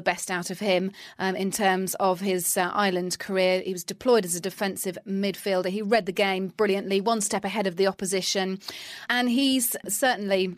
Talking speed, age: 185 wpm, 30-49